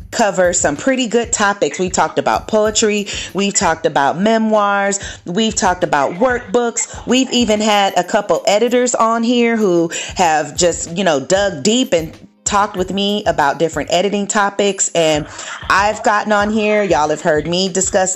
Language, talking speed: English, 165 wpm